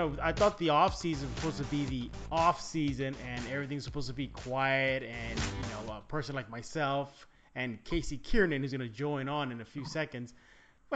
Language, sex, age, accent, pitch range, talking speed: English, male, 30-49, American, 130-165 Hz, 205 wpm